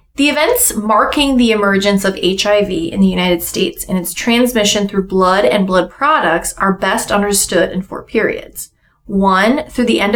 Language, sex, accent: English, female, American